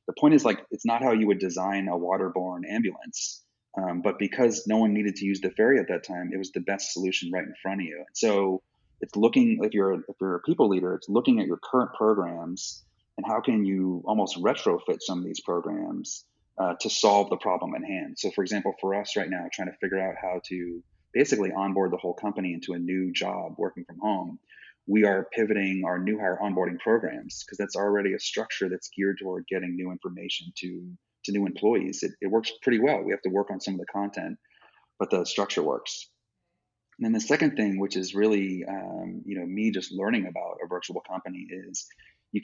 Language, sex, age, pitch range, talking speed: English, male, 30-49, 95-105 Hz, 220 wpm